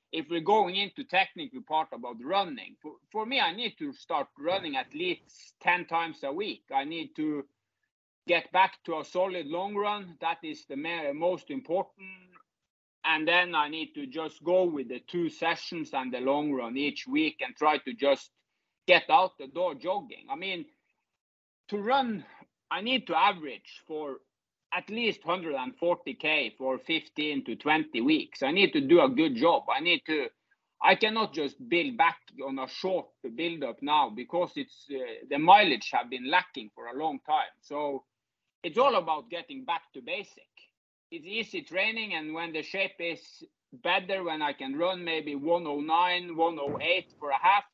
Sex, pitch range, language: male, 150-230 Hz, English